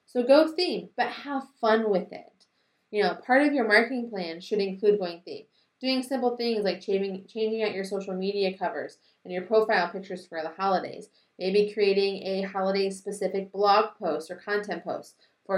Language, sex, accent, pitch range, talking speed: English, female, American, 175-205 Hz, 180 wpm